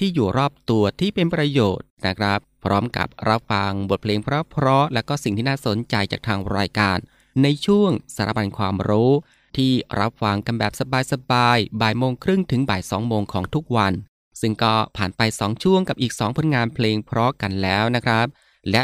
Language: Thai